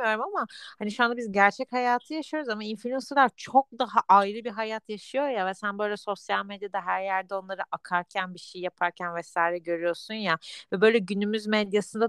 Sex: female